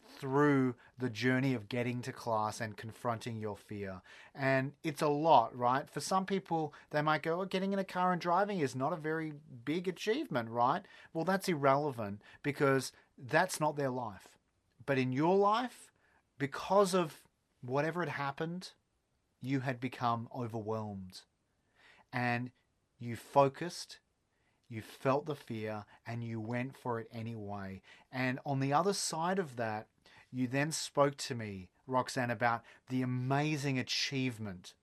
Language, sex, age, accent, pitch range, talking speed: English, male, 30-49, Australian, 115-145 Hz, 150 wpm